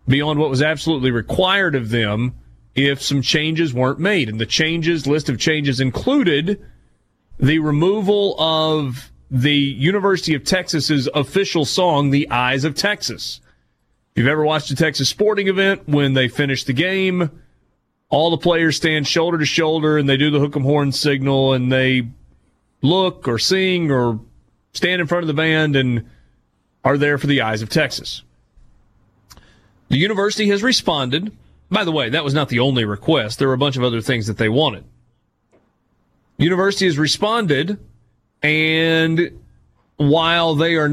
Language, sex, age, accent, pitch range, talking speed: English, male, 30-49, American, 130-165 Hz, 165 wpm